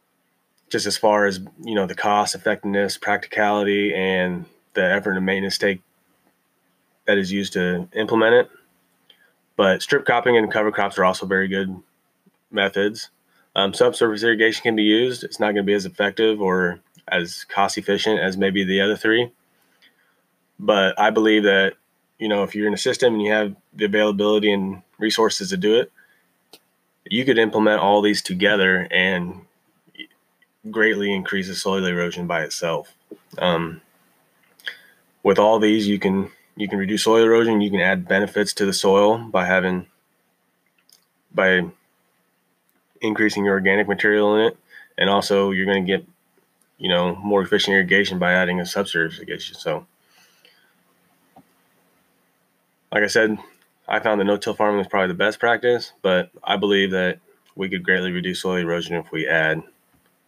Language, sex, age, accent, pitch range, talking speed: English, male, 20-39, American, 95-105 Hz, 160 wpm